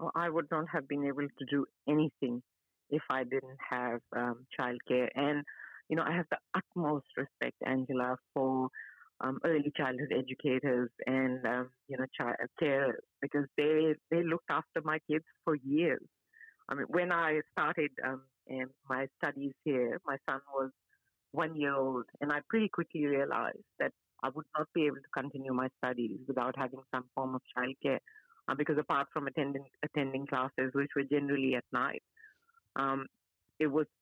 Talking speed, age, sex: 165 wpm, 50-69, female